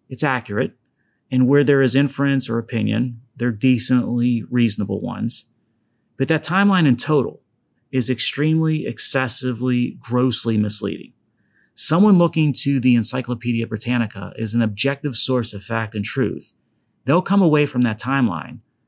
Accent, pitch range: American, 110-135 Hz